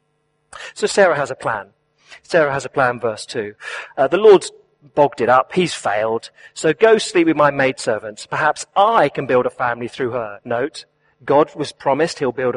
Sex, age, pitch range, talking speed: male, 40-59, 130-175 Hz, 185 wpm